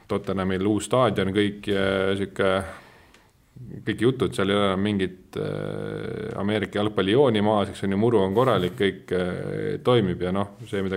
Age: 30-49